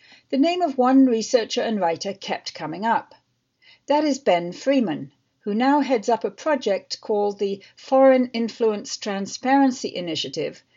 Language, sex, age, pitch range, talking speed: English, female, 60-79, 195-270 Hz, 145 wpm